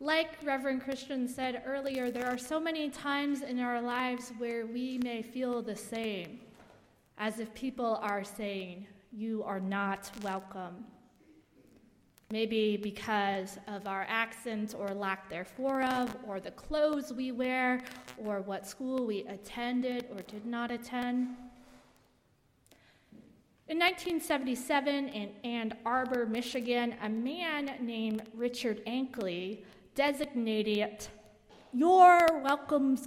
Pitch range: 205-265 Hz